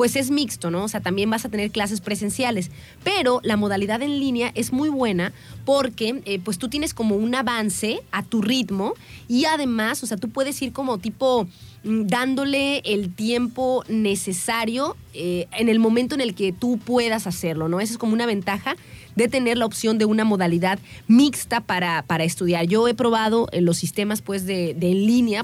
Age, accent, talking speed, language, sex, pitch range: 30-49, Mexican, 185 wpm, Spanish, female, 200-250 Hz